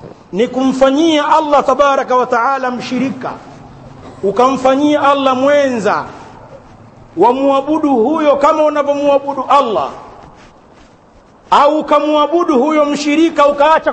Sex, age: male, 50-69